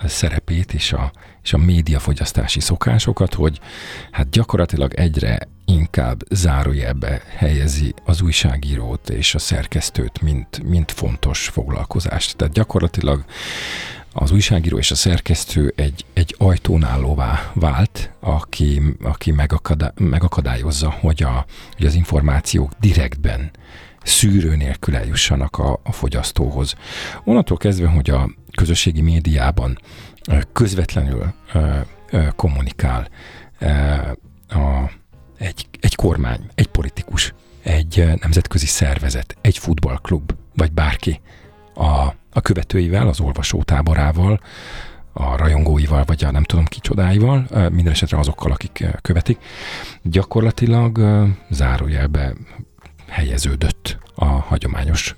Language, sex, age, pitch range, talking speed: Hungarian, male, 50-69, 75-95 Hz, 105 wpm